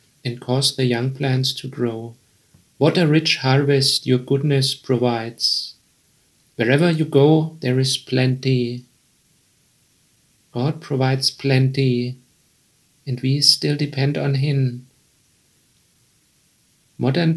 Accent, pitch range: German, 130-145 Hz